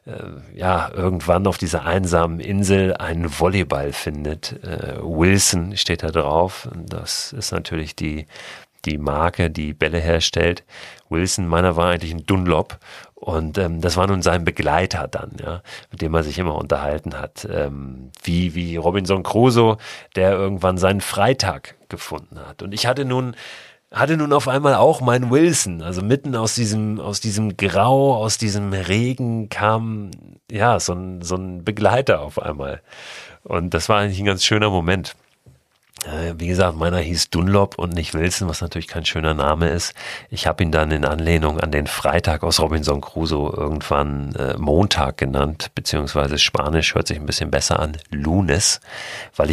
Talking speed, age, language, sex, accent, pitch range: 160 wpm, 40-59, German, male, German, 80-100 Hz